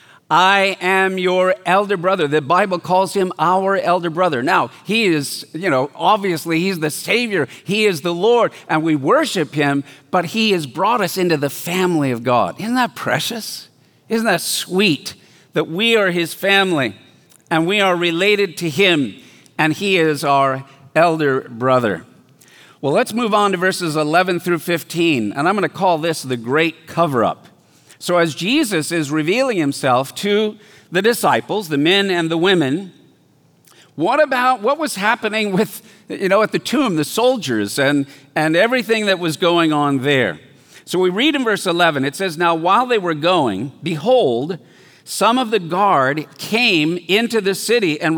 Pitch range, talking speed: 155-200 Hz, 170 wpm